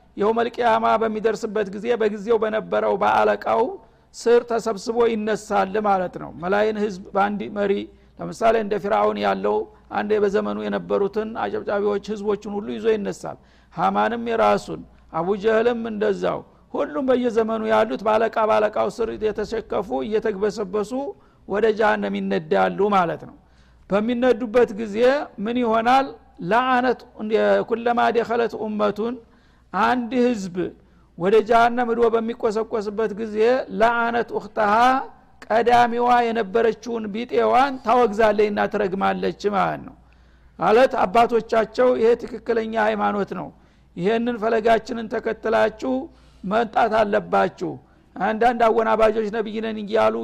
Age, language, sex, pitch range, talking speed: 50-69, Amharic, male, 210-235 Hz, 95 wpm